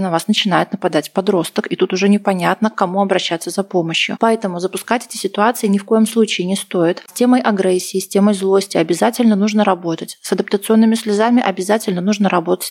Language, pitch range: Russian, 185-225 Hz